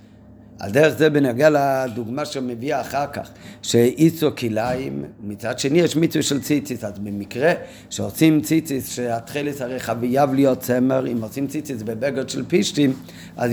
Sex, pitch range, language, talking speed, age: male, 120-155 Hz, Hebrew, 145 wpm, 50-69